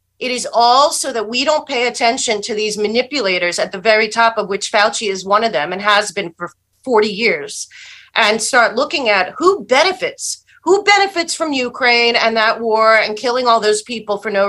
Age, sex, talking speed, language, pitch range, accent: 40-59, female, 205 wpm, English, 210-265 Hz, American